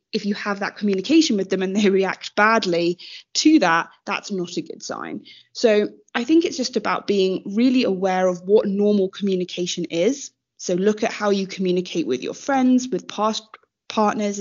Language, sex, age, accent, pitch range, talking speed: English, female, 20-39, British, 185-225 Hz, 185 wpm